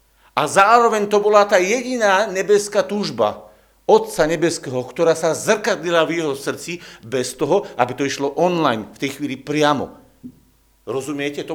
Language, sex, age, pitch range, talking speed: Slovak, male, 50-69, 135-195 Hz, 145 wpm